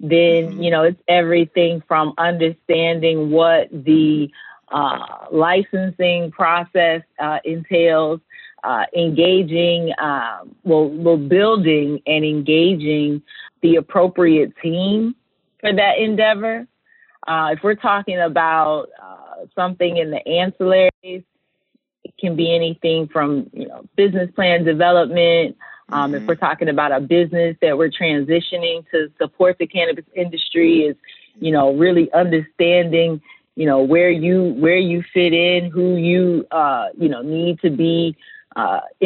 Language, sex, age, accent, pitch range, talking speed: English, female, 30-49, American, 160-185 Hz, 130 wpm